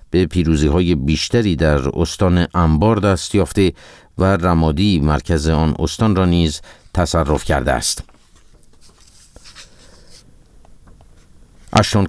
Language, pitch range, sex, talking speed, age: Persian, 80-100 Hz, male, 100 wpm, 50-69